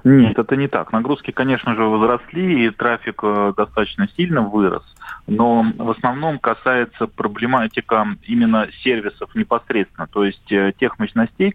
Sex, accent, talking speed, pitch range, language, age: male, native, 130 wpm, 100-145 Hz, Russian, 30-49